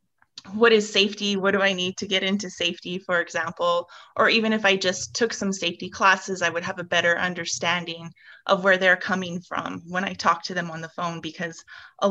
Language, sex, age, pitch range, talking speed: English, female, 20-39, 165-195 Hz, 215 wpm